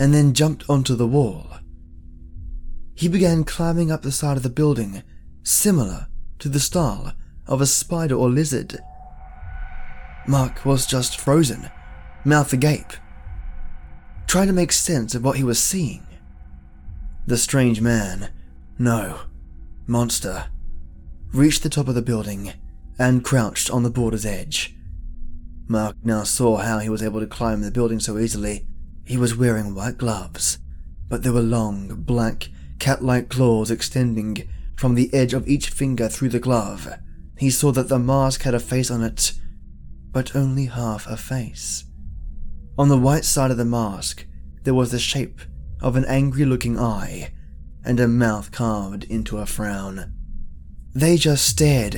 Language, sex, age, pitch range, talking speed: English, male, 20-39, 80-130 Hz, 150 wpm